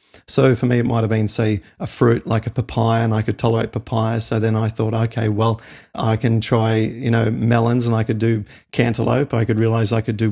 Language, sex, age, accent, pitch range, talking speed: English, male, 40-59, Australian, 110-125 Hz, 240 wpm